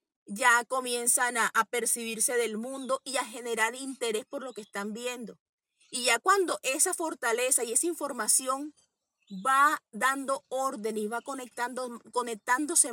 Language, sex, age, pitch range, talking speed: English, female, 30-49, 220-270 Hz, 145 wpm